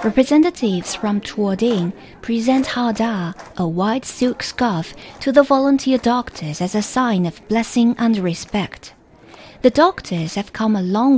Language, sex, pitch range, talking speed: English, female, 185-245 Hz, 140 wpm